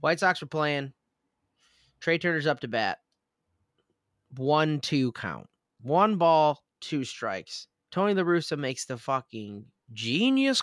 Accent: American